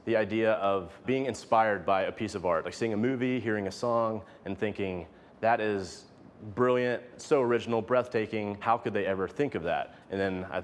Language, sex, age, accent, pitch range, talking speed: English, male, 30-49, American, 95-120 Hz, 195 wpm